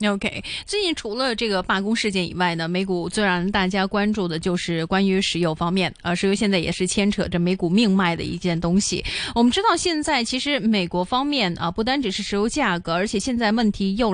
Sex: female